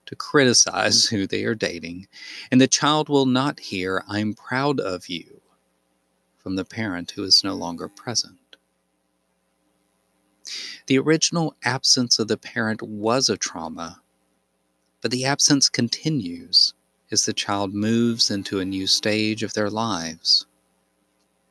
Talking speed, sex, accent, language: 135 wpm, male, American, English